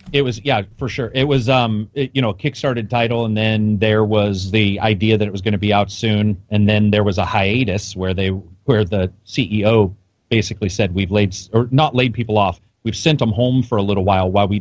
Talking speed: 245 wpm